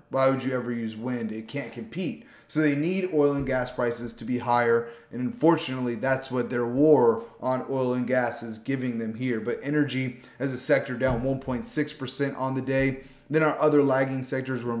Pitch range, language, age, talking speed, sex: 125-150 Hz, English, 30-49, 200 wpm, male